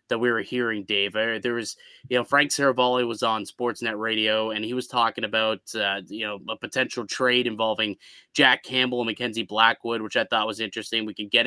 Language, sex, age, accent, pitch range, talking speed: English, male, 20-39, American, 110-130 Hz, 210 wpm